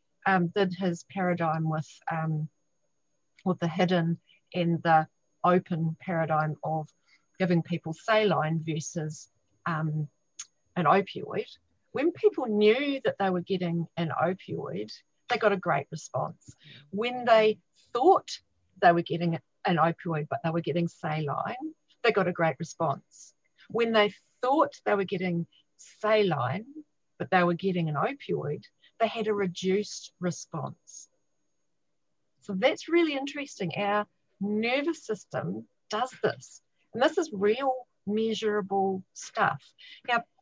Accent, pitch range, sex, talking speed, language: Australian, 165-215 Hz, female, 130 wpm, English